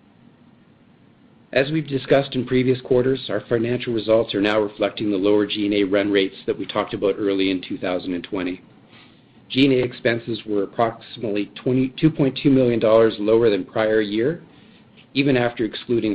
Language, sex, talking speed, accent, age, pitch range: English, male, 140 wpm, American, 40-59, 100-125 Hz